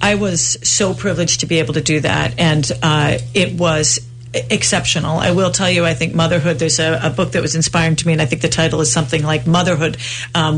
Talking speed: 235 wpm